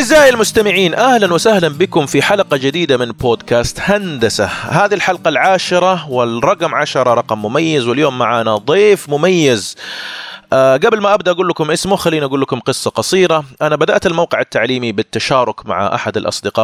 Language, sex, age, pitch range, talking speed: Arabic, male, 30-49, 110-155 Hz, 150 wpm